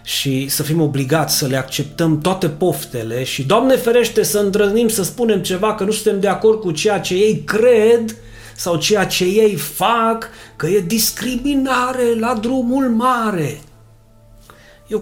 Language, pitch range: Romanian, 135-215 Hz